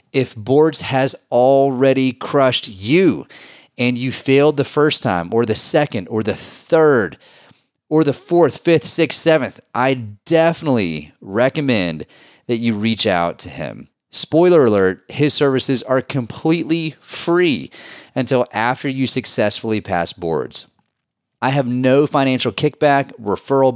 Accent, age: American, 30-49